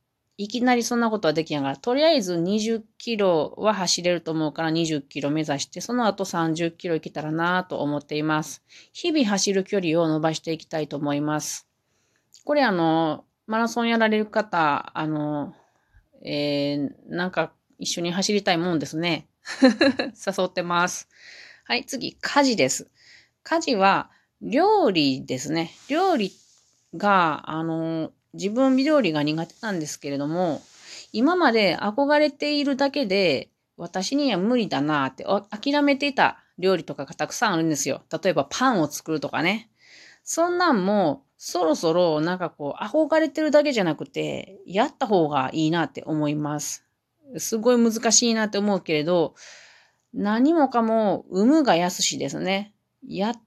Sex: female